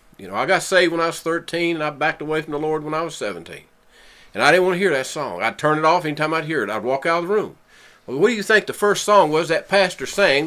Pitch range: 110-160 Hz